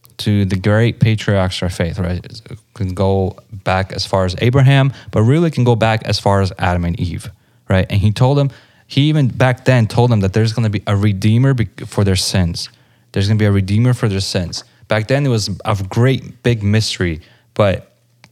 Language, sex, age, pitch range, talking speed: English, male, 20-39, 100-120 Hz, 215 wpm